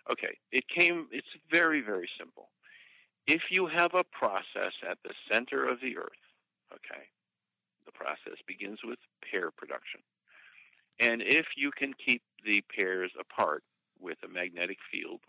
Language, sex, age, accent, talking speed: English, male, 50-69, American, 145 wpm